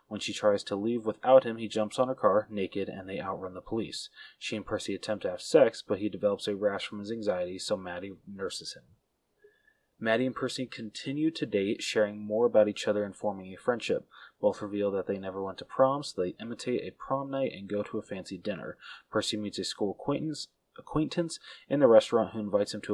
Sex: male